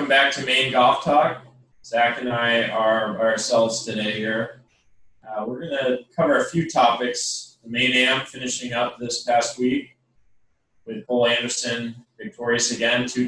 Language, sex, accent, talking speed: English, male, American, 155 wpm